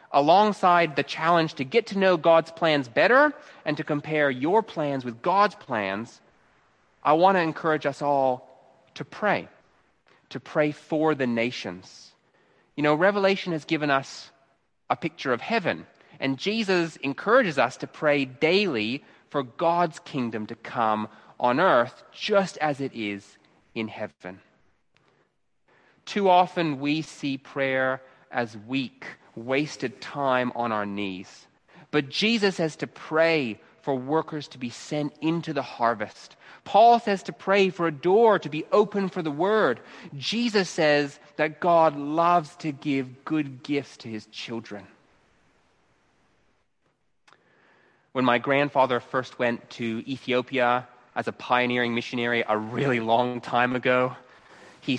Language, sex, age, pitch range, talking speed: English, male, 30-49, 125-165 Hz, 140 wpm